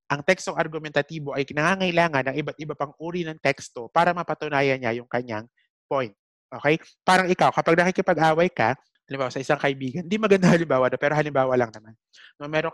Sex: male